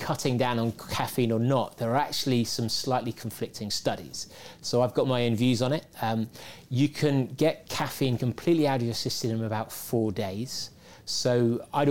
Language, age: English, 30-49